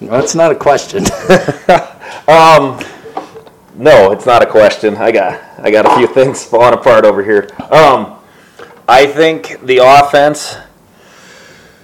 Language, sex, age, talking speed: English, male, 30-49, 130 wpm